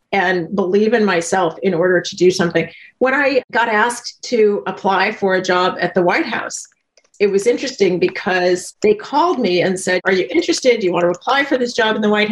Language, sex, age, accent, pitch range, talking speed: English, female, 40-59, American, 190-240 Hz, 220 wpm